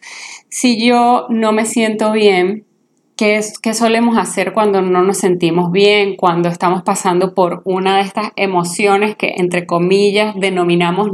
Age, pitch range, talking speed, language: 20-39, 185-220 Hz, 140 wpm, Spanish